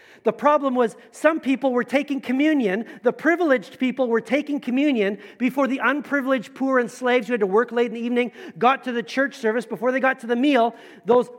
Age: 40-59